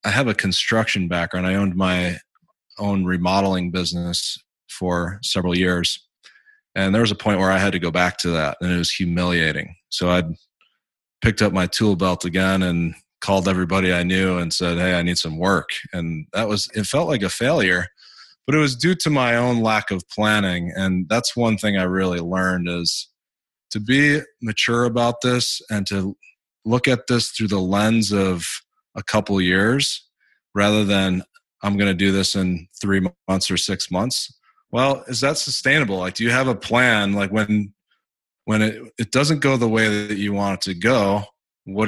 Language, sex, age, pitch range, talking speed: English, male, 20-39, 90-110 Hz, 190 wpm